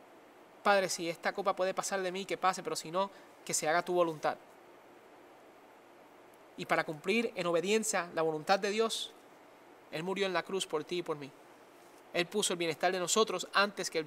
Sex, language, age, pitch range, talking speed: male, English, 20-39, 175-235 Hz, 195 wpm